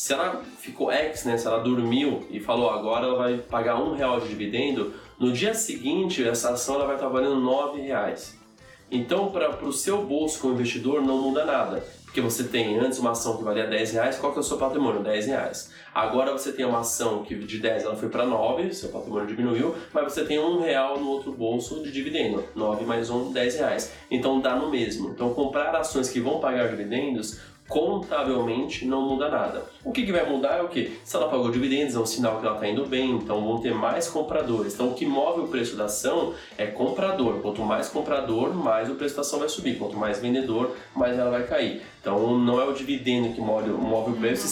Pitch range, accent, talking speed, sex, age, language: 115-140 Hz, Brazilian, 210 wpm, male, 20-39, Portuguese